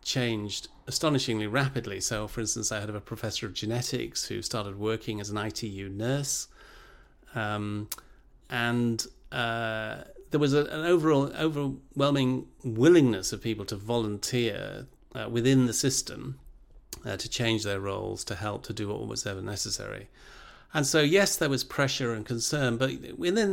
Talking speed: 150 wpm